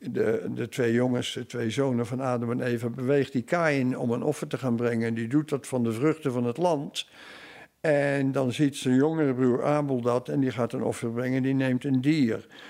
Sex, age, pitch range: male, 50-69, 130-170 Hz